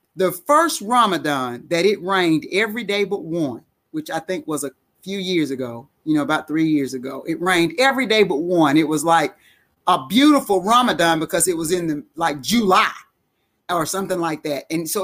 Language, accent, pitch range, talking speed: English, American, 170-235 Hz, 195 wpm